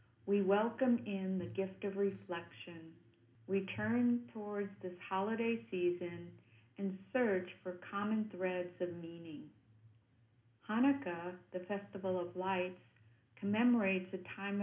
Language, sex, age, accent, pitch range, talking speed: English, female, 50-69, American, 165-200 Hz, 110 wpm